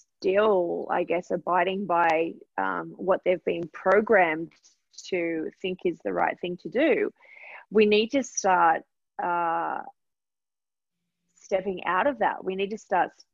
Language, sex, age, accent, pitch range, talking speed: English, female, 20-39, Australian, 175-210 Hz, 140 wpm